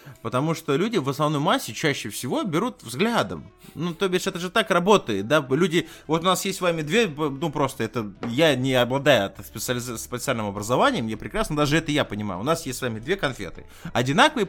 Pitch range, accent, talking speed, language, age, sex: 125-195 Hz, native, 205 wpm, Russian, 20-39, male